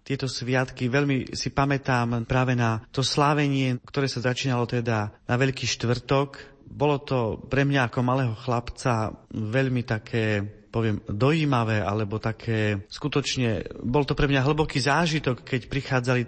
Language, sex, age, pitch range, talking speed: Slovak, male, 30-49, 115-135 Hz, 140 wpm